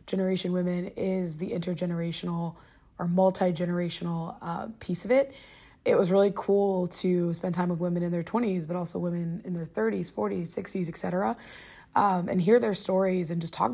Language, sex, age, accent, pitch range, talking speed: English, female, 20-39, American, 175-195 Hz, 175 wpm